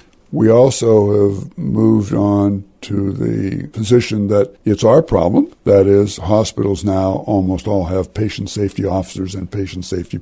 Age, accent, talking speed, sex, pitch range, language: 60-79, American, 145 wpm, male, 95-115 Hz, English